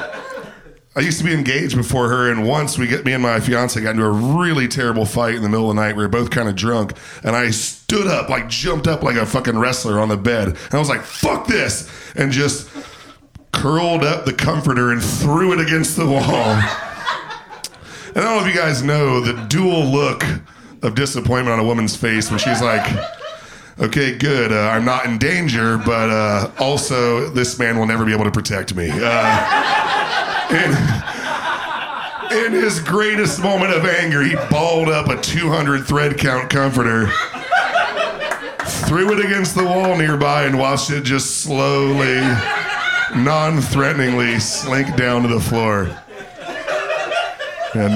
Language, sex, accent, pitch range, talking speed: English, male, American, 115-155 Hz, 170 wpm